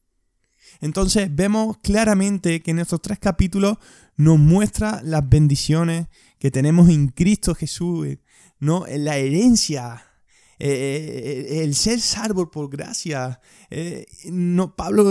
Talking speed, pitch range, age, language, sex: 125 wpm, 160-195 Hz, 20-39, Spanish, male